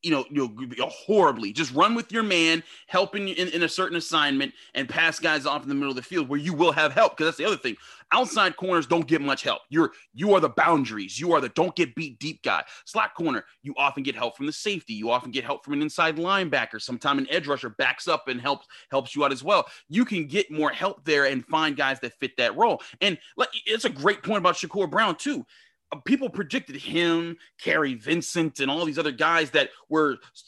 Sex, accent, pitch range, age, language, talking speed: male, American, 140-180 Hz, 30-49, English, 235 wpm